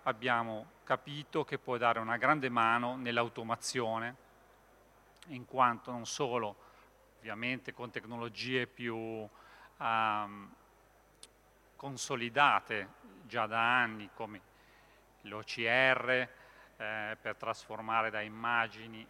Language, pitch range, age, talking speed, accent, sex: Italian, 115-135 Hz, 40-59, 90 wpm, native, male